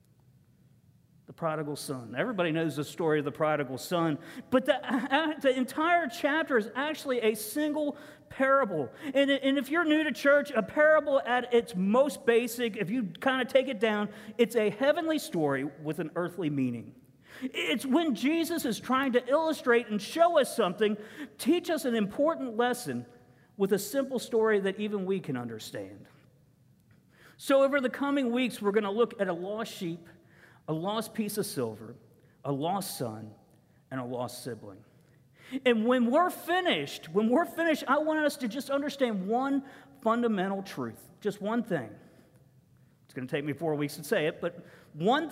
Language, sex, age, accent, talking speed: English, male, 50-69, American, 170 wpm